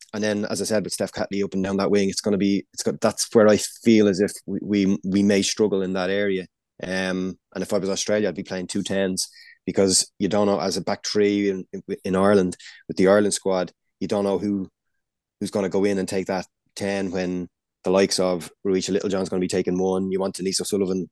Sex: male